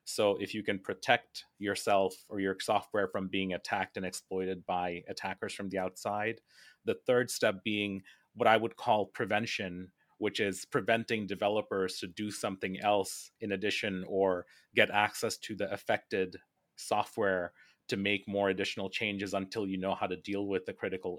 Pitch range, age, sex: 95-115 Hz, 30-49, male